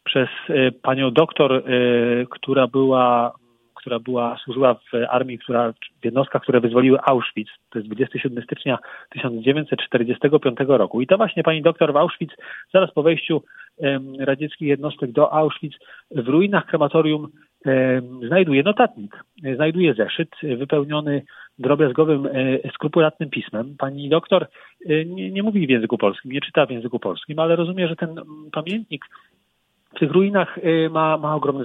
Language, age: Polish, 40-59